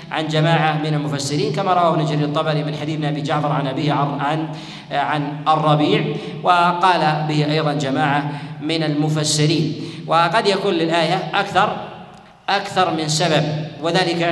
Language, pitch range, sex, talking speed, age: Arabic, 155-180 Hz, male, 130 wpm, 40-59